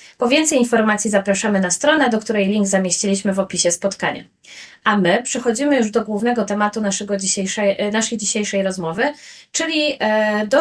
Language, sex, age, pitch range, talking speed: Polish, female, 20-39, 195-235 Hz, 140 wpm